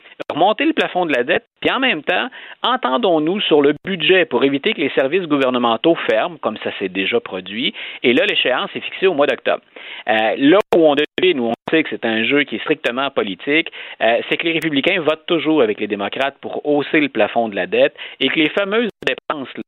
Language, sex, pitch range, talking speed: French, male, 120-180 Hz, 220 wpm